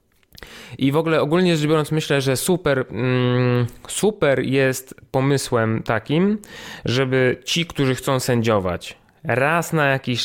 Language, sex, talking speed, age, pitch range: Polish, male, 125 wpm, 20-39, 110-135 Hz